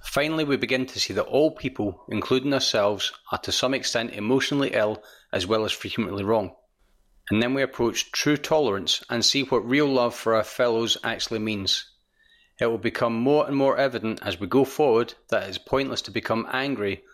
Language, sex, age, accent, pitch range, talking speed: English, male, 30-49, British, 105-135 Hz, 195 wpm